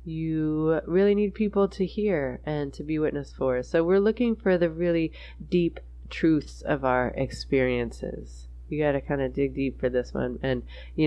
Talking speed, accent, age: 185 wpm, American, 20-39